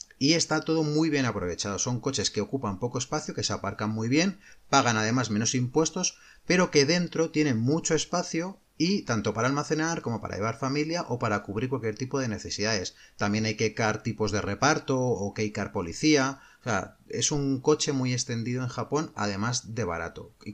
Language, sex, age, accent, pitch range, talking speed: Spanish, male, 30-49, Spanish, 105-150 Hz, 195 wpm